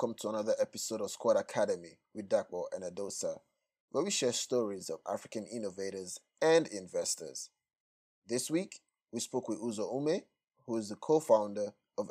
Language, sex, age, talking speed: English, male, 30-49, 165 wpm